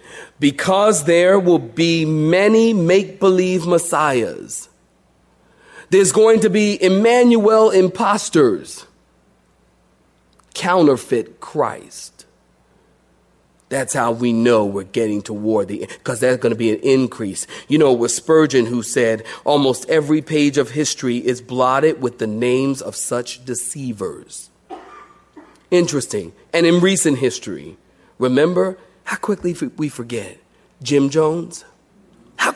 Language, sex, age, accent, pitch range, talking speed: English, male, 40-59, American, 130-200 Hz, 115 wpm